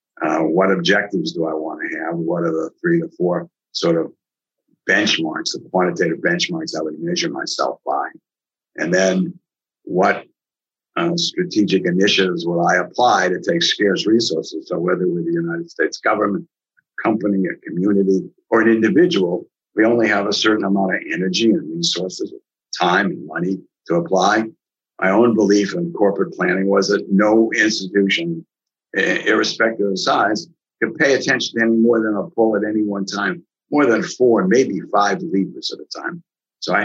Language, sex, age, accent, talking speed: English, male, 50-69, American, 170 wpm